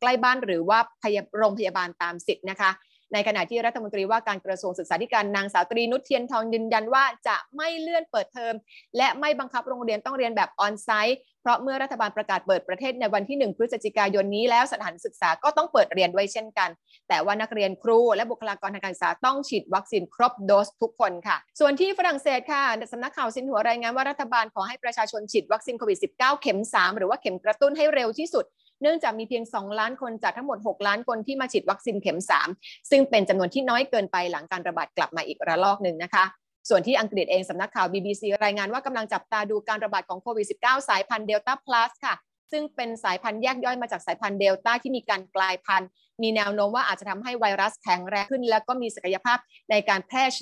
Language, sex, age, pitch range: Thai, female, 20-39, 200-255 Hz